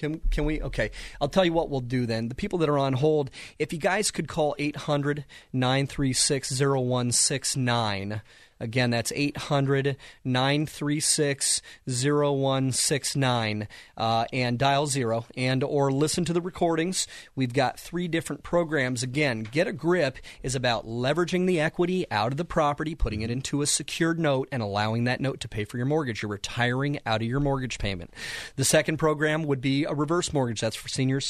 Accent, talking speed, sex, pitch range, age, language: American, 165 wpm, male, 115-150 Hz, 30-49, English